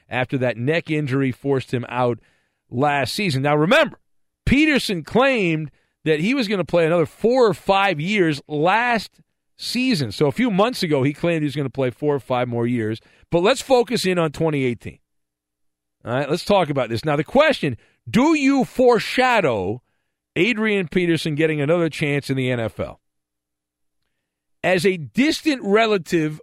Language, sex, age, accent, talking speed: English, male, 50-69, American, 165 wpm